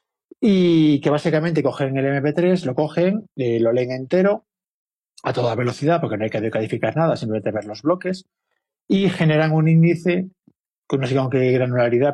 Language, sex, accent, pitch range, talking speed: Spanish, male, Spanish, 120-165 Hz, 175 wpm